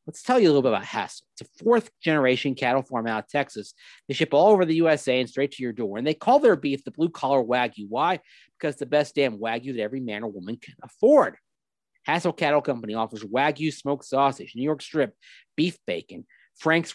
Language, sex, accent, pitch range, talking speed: English, male, American, 130-160 Hz, 225 wpm